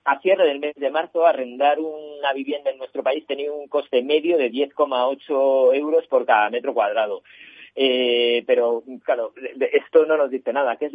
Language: Spanish